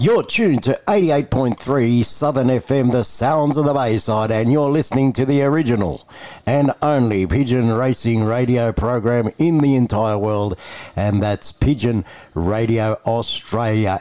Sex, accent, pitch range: male, Australian, 110-135 Hz